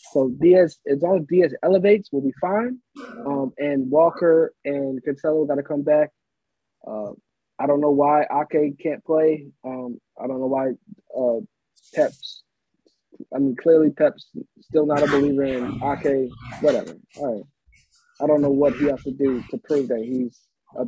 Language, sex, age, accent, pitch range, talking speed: English, male, 20-39, American, 135-165 Hz, 175 wpm